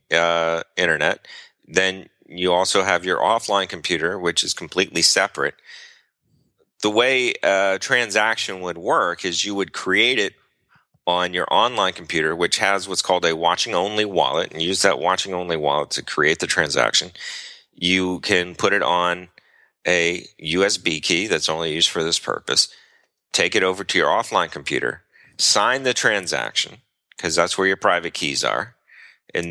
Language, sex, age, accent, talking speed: English, male, 30-49, American, 155 wpm